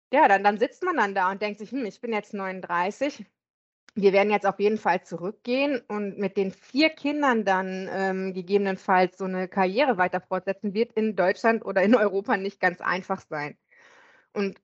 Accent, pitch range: German, 190-230 Hz